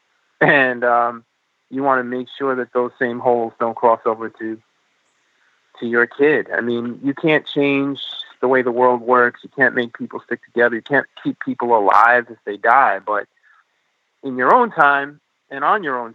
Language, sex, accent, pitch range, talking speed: English, male, American, 125-150 Hz, 190 wpm